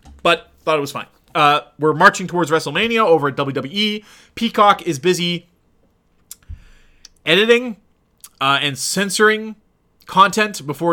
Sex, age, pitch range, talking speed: male, 30-49, 135-170 Hz, 120 wpm